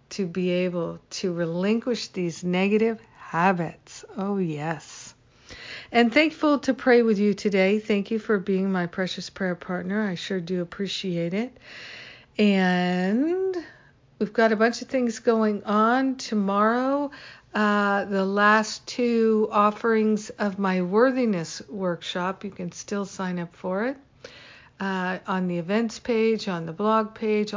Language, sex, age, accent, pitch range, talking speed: English, female, 60-79, American, 175-215 Hz, 140 wpm